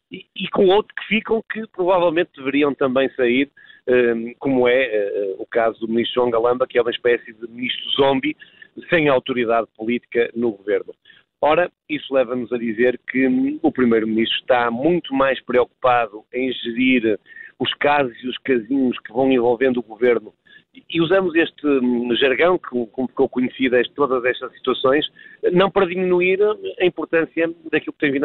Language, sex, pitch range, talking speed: Portuguese, male, 120-155 Hz, 155 wpm